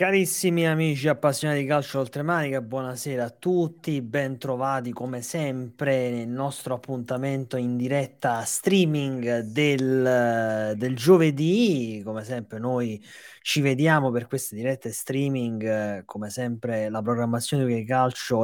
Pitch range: 120-150 Hz